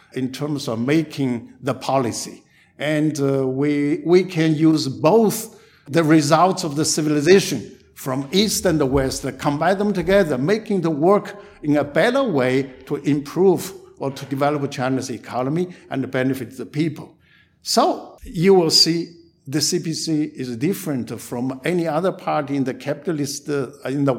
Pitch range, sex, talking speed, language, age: 135-185 Hz, male, 155 wpm, English, 60-79